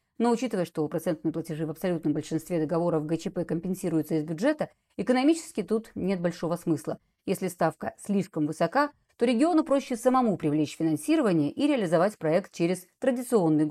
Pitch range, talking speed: 160-220 Hz, 145 wpm